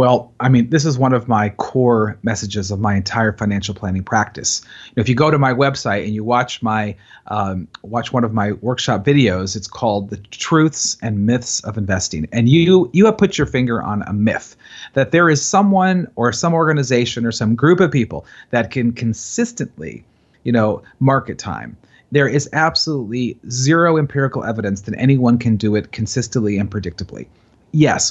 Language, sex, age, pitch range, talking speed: English, male, 30-49, 110-140 Hz, 180 wpm